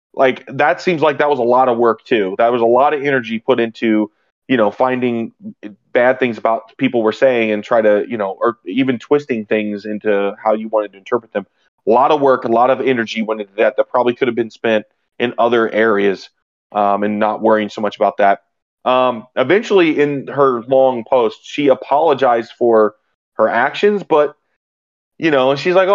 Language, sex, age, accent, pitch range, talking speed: English, male, 30-49, American, 110-145 Hz, 205 wpm